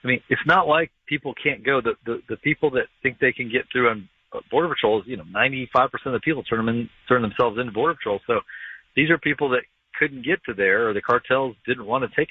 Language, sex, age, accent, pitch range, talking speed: English, male, 40-59, American, 115-145 Hz, 250 wpm